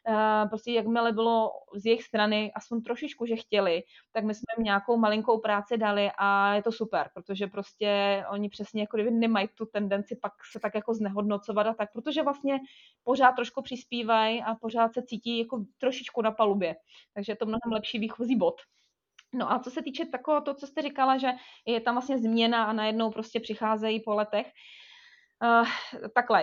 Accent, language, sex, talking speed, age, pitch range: native, Czech, female, 180 wpm, 30-49, 200-240 Hz